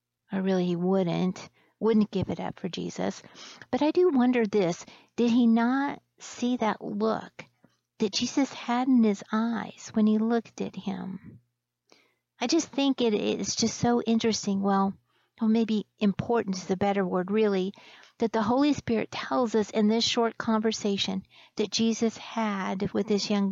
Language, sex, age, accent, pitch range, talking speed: English, female, 50-69, American, 195-230 Hz, 165 wpm